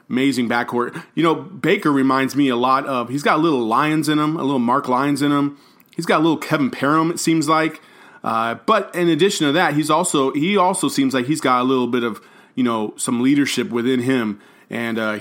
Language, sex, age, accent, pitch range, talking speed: English, male, 30-49, American, 120-150 Hz, 230 wpm